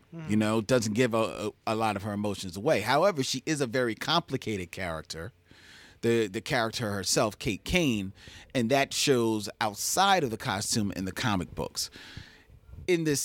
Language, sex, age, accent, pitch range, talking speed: English, male, 40-59, American, 95-130 Hz, 170 wpm